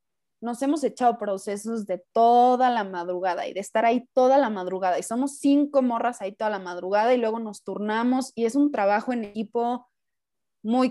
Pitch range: 195-235 Hz